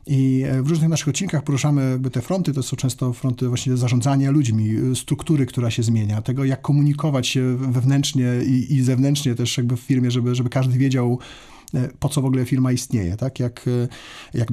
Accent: native